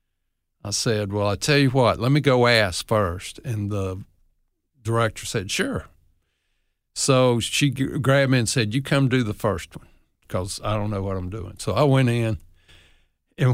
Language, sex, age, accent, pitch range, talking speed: English, male, 60-79, American, 95-125 Hz, 180 wpm